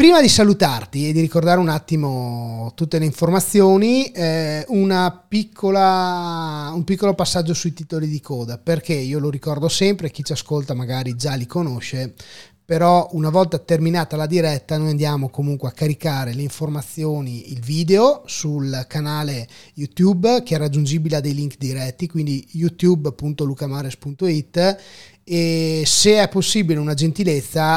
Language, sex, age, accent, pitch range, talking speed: Italian, male, 30-49, native, 135-170 Hz, 140 wpm